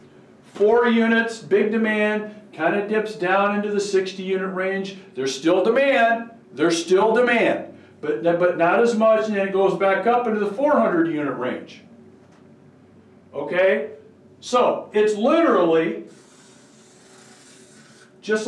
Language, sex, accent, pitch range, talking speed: English, male, American, 180-225 Hz, 130 wpm